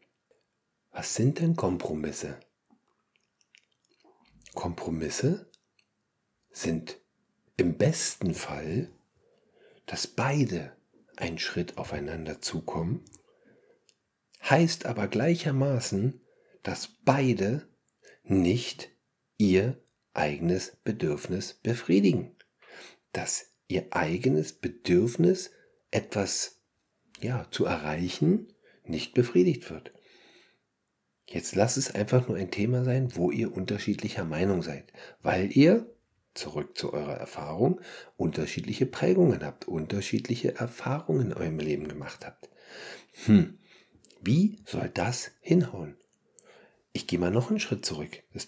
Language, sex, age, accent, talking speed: German, male, 50-69, German, 95 wpm